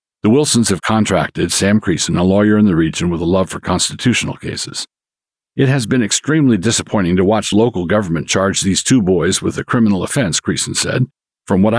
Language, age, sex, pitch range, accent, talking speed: English, 50-69, male, 90-110 Hz, American, 195 wpm